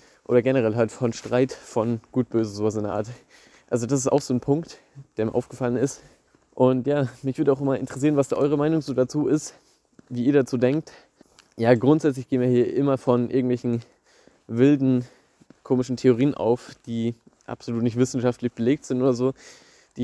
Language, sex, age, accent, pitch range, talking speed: German, male, 20-39, German, 120-135 Hz, 185 wpm